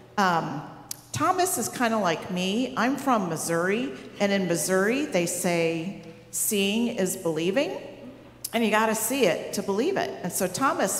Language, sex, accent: English, female, American